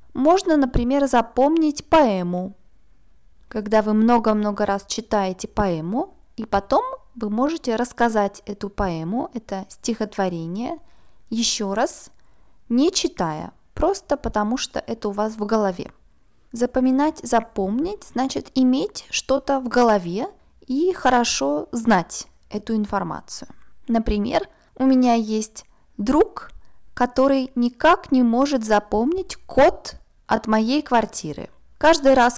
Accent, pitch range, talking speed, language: native, 205-270 Hz, 110 wpm, Russian